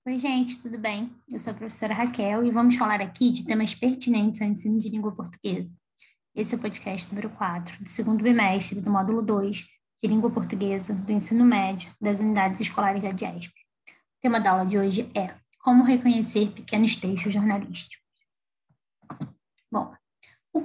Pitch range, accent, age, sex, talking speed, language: 205-245 Hz, Brazilian, 10-29, female, 170 wpm, Portuguese